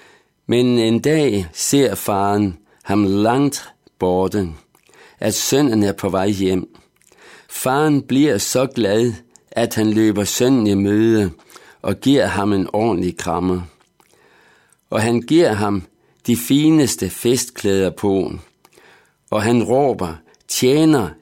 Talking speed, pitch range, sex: 120 wpm, 95-125 Hz, male